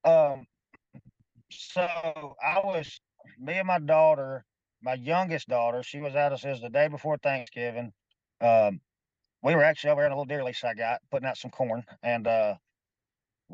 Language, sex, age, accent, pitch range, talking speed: English, male, 40-59, American, 120-145 Hz, 170 wpm